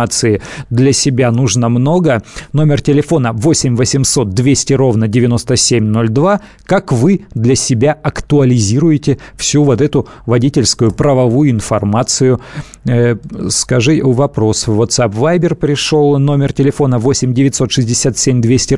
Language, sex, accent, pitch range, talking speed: Russian, male, native, 120-140 Hz, 110 wpm